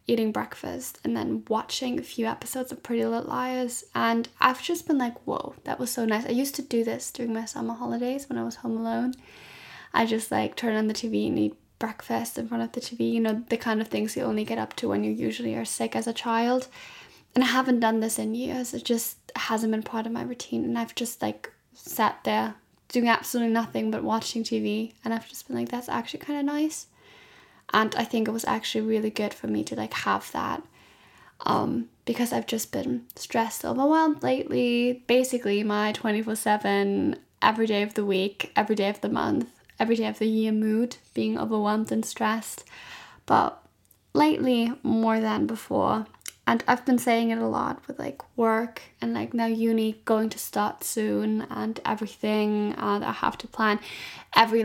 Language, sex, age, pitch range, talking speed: English, female, 10-29, 210-240 Hz, 200 wpm